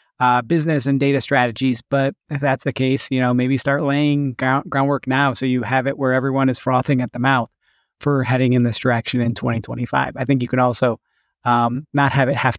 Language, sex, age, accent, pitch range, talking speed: English, male, 30-49, American, 130-165 Hz, 220 wpm